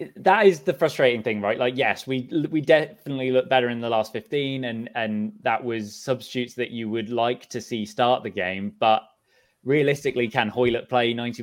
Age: 20-39